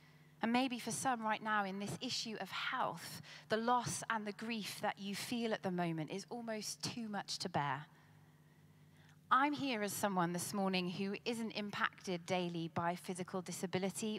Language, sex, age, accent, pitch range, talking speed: English, female, 20-39, British, 190-250 Hz, 175 wpm